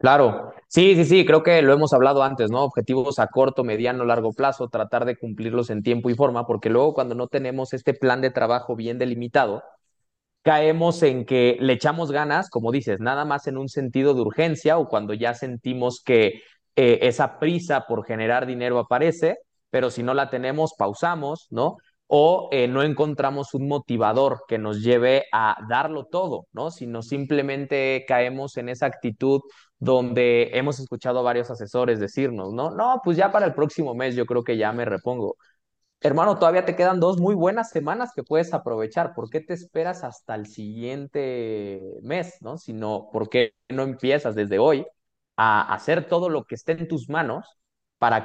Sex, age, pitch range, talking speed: male, 20-39, 120-150 Hz, 180 wpm